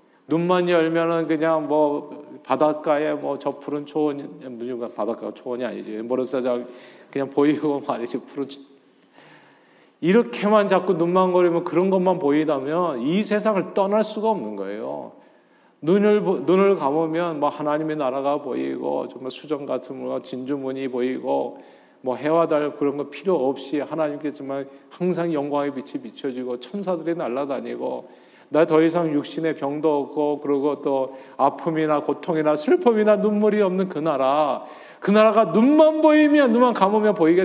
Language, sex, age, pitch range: Korean, male, 40-59, 135-170 Hz